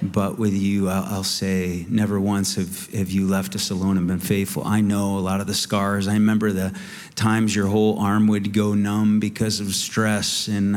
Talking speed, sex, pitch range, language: 205 wpm, male, 100-110 Hz, English